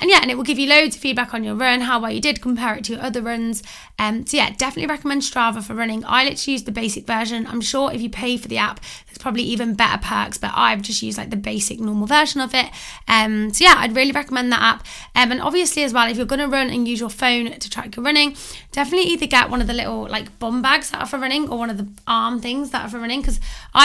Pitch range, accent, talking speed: 225-265 Hz, British, 280 wpm